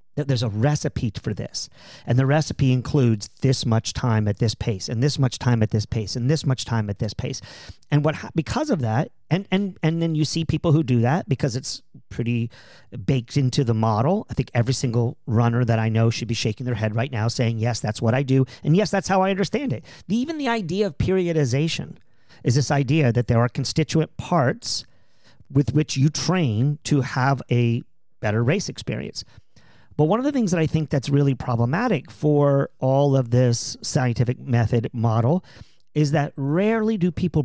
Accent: American